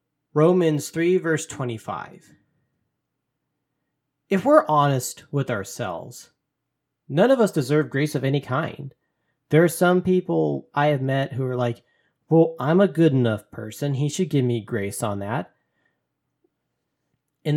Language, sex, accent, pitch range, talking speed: English, male, American, 130-165 Hz, 140 wpm